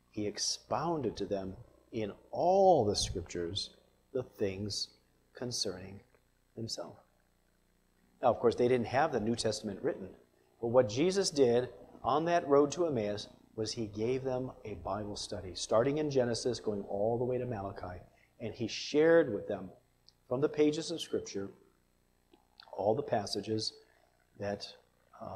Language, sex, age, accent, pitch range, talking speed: English, male, 40-59, American, 95-125 Hz, 145 wpm